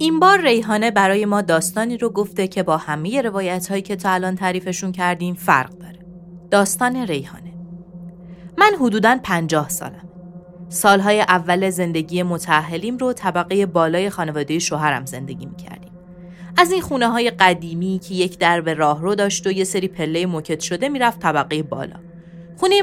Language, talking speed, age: Persian, 150 wpm, 30-49